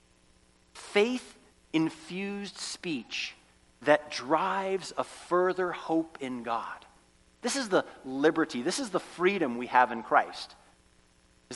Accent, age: American, 40-59